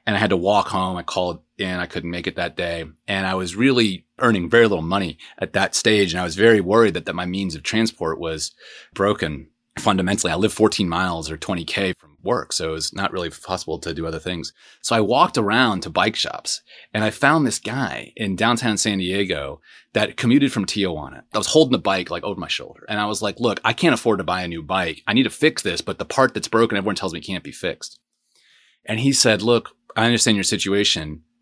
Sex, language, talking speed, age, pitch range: male, English, 235 wpm, 30-49, 90-110 Hz